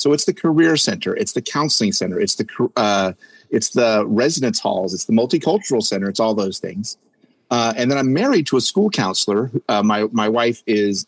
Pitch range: 105-135 Hz